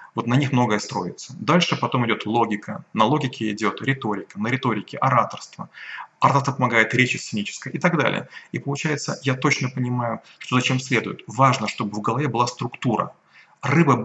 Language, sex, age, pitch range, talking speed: Russian, male, 30-49, 120-140 Hz, 160 wpm